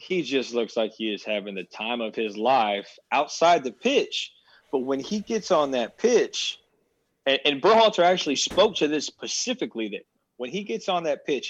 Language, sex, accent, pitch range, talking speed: English, male, American, 110-135 Hz, 195 wpm